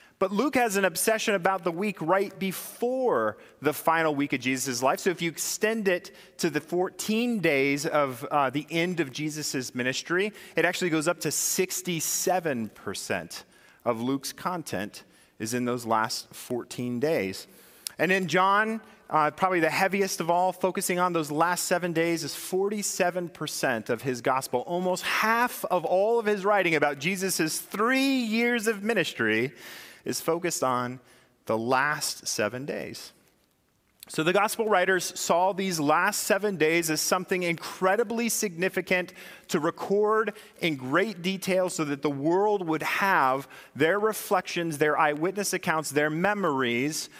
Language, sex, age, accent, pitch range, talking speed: English, male, 30-49, American, 140-190 Hz, 155 wpm